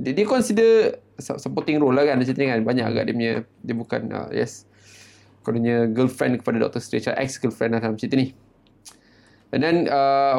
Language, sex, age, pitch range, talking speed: Malay, male, 20-39, 110-140 Hz, 180 wpm